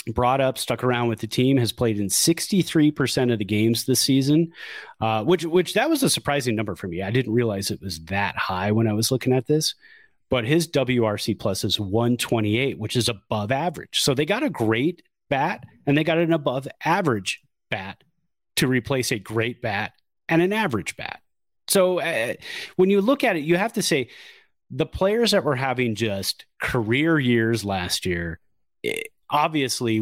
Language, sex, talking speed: English, male, 190 wpm